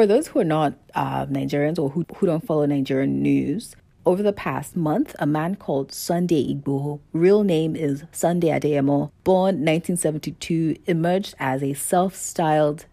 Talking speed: 160 wpm